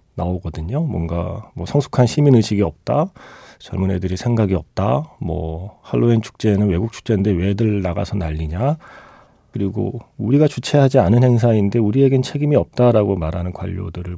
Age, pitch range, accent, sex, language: 40-59, 95-140 Hz, native, male, Korean